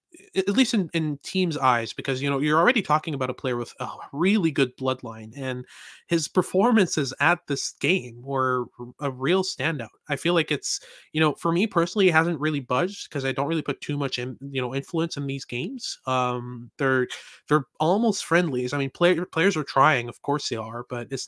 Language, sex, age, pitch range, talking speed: English, male, 20-39, 125-160 Hz, 210 wpm